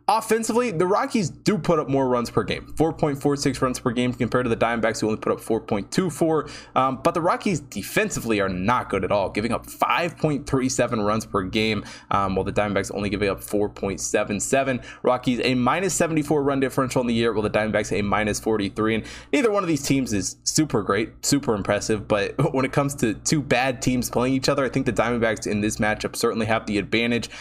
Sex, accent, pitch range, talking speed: male, American, 105-135 Hz, 205 wpm